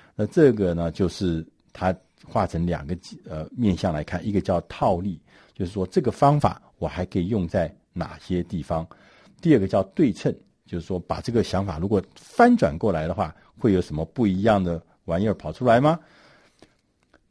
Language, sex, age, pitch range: Chinese, male, 60-79, 90-135 Hz